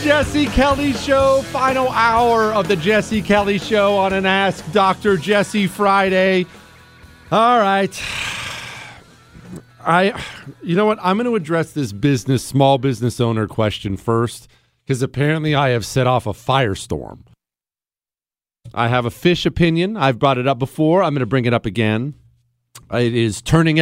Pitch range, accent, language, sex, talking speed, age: 120-175 Hz, American, English, male, 155 wpm, 40-59